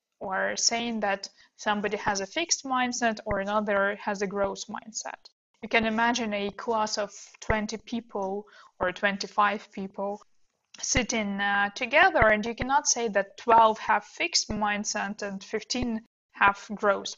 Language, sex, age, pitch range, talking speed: English, female, 20-39, 210-245 Hz, 145 wpm